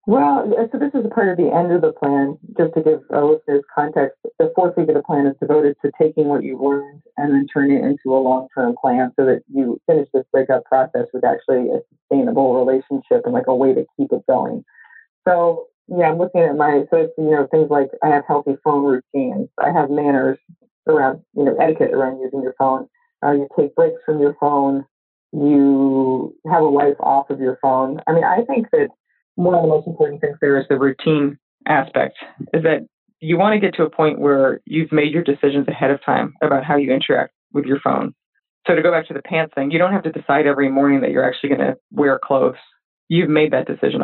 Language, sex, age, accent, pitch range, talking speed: English, female, 30-49, American, 140-170 Hz, 225 wpm